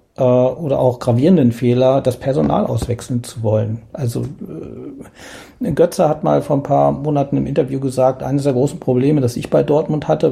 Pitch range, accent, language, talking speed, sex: 115-135 Hz, German, German, 170 wpm, male